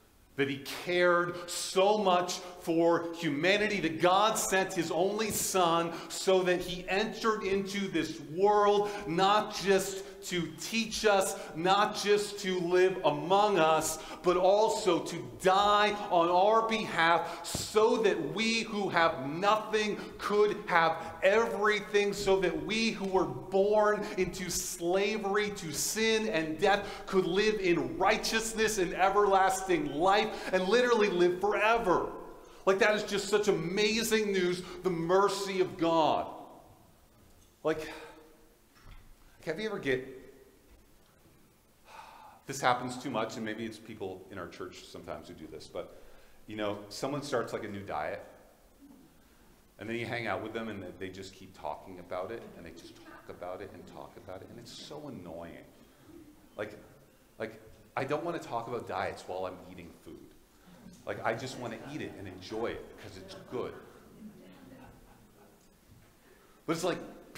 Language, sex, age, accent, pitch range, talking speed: English, male, 40-59, American, 155-205 Hz, 150 wpm